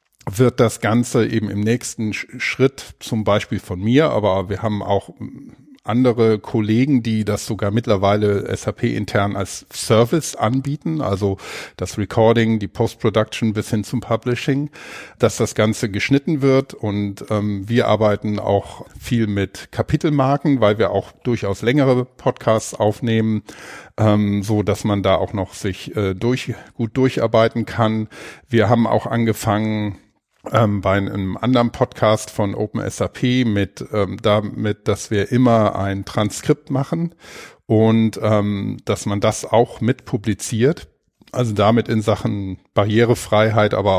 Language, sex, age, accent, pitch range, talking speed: German, male, 50-69, German, 105-120 Hz, 140 wpm